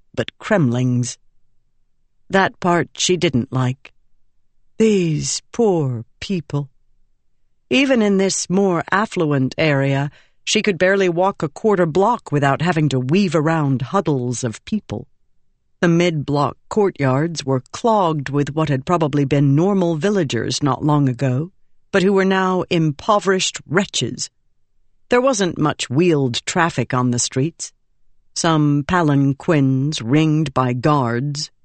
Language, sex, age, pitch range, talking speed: English, female, 50-69, 135-190 Hz, 125 wpm